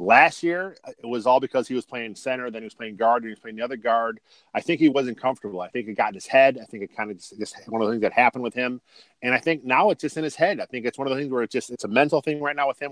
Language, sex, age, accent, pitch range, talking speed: English, male, 40-59, American, 120-160 Hz, 355 wpm